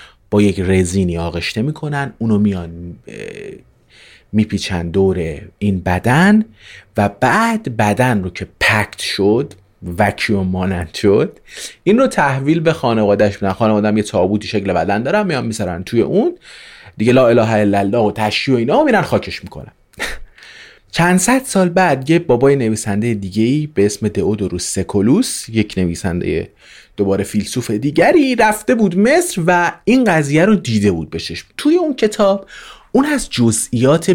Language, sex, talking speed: Persian, male, 145 wpm